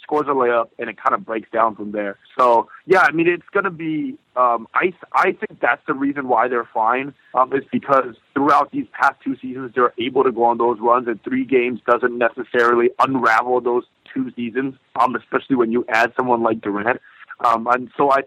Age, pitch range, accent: 30-49, 120-155 Hz, American